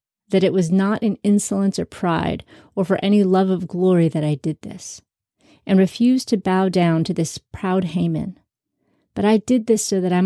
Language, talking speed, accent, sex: English, 200 wpm, American, female